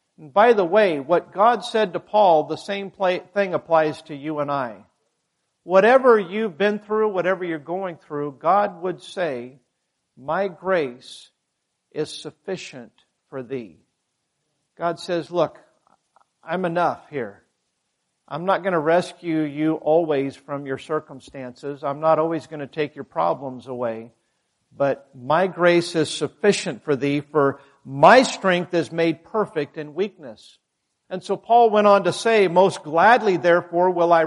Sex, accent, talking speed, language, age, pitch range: male, American, 150 wpm, English, 50-69, 155-210 Hz